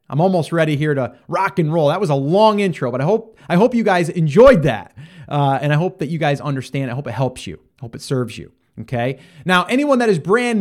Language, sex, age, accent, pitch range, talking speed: English, male, 30-49, American, 130-175 Hz, 260 wpm